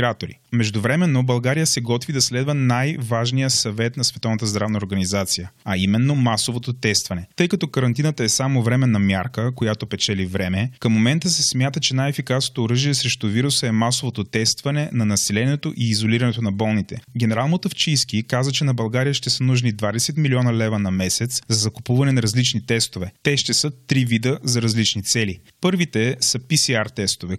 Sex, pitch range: male, 110-130 Hz